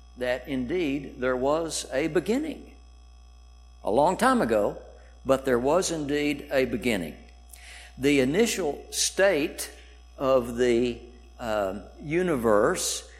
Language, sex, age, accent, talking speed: English, male, 60-79, American, 105 wpm